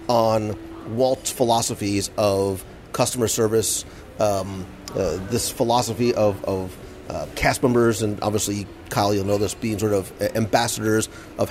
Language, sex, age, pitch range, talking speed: English, male, 40-59, 100-130 Hz, 135 wpm